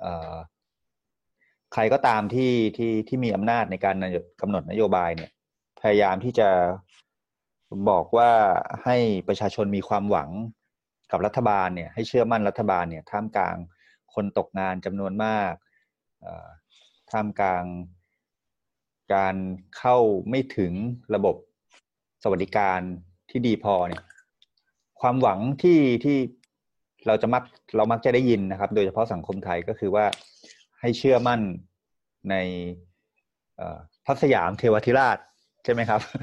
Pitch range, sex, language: 95-125 Hz, male, Thai